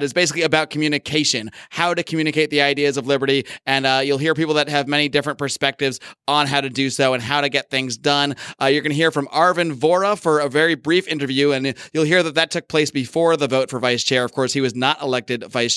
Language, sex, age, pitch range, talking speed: English, male, 30-49, 130-160 Hz, 245 wpm